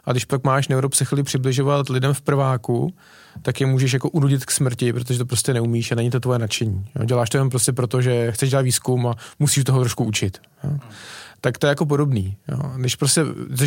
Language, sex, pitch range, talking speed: Czech, male, 120-145 Hz, 200 wpm